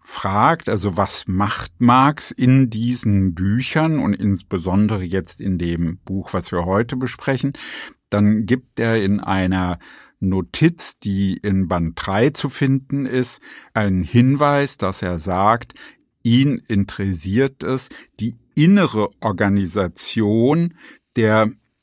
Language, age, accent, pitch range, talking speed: German, 50-69, German, 100-130 Hz, 120 wpm